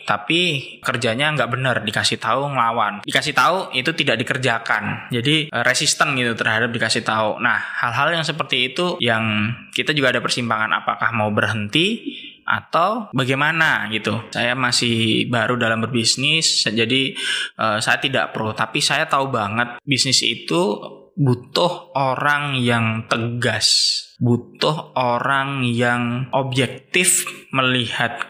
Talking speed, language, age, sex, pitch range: 125 wpm, Indonesian, 20-39, male, 115-140 Hz